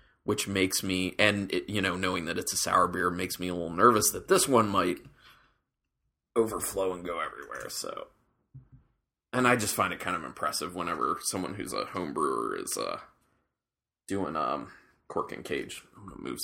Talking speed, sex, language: 185 wpm, male, English